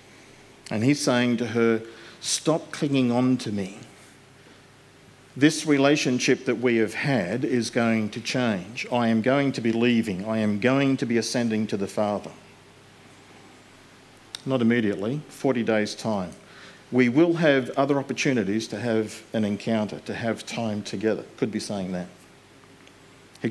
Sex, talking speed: male, 150 wpm